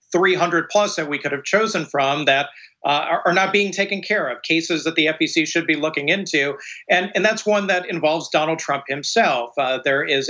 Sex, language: male, English